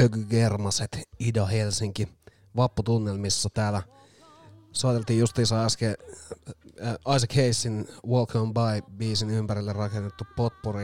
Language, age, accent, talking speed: Finnish, 30-49, native, 95 wpm